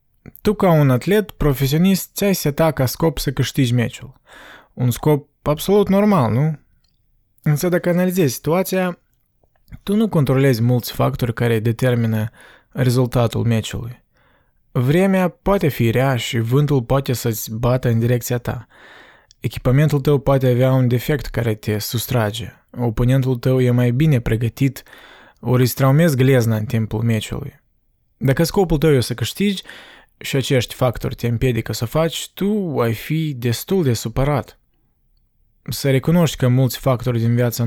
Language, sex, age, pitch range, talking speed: Romanian, male, 20-39, 120-150 Hz, 145 wpm